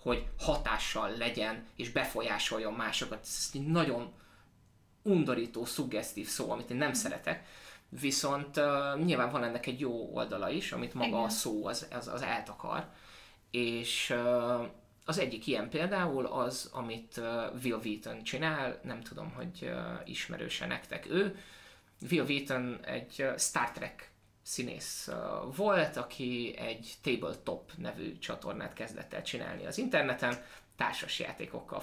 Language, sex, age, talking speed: Hungarian, male, 20-39, 135 wpm